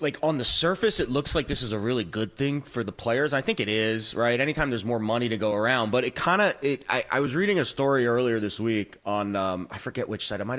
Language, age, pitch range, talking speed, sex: English, 30-49, 115-160 Hz, 270 wpm, male